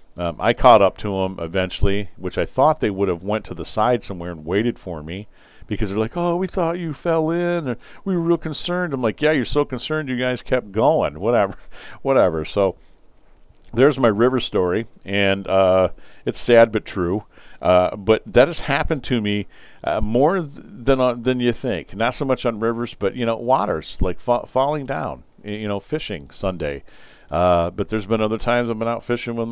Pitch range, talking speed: 100-130 Hz, 205 wpm